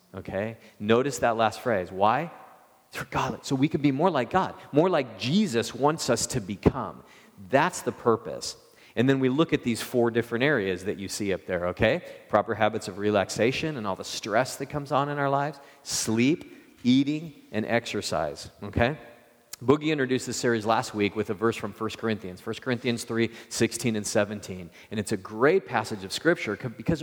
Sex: male